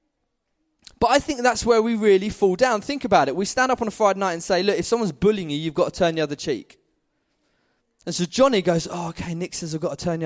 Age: 20-39